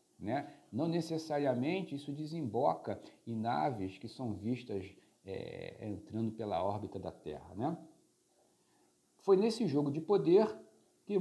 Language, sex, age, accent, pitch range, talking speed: Portuguese, male, 50-69, Brazilian, 110-165 Hz, 120 wpm